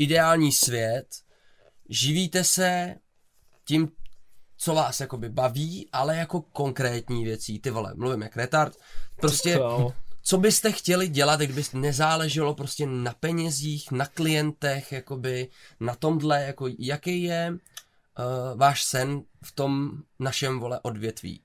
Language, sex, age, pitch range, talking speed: Czech, male, 20-39, 120-145 Hz, 125 wpm